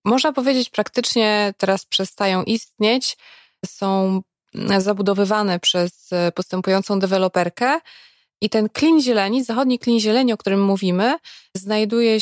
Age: 20-39